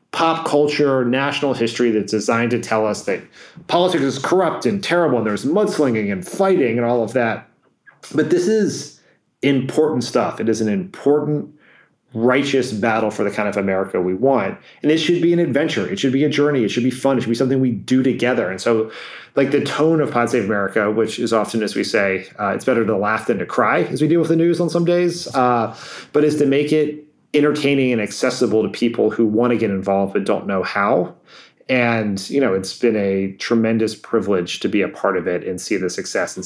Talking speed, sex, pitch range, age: 220 wpm, male, 105-145 Hz, 30-49